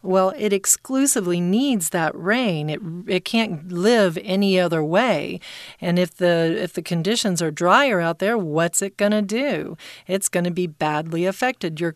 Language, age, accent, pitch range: Chinese, 40-59, American, 165-205 Hz